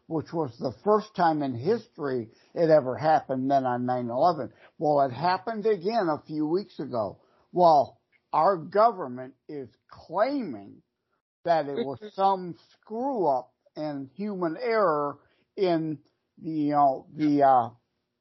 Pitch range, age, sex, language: 140-195 Hz, 60-79, male, English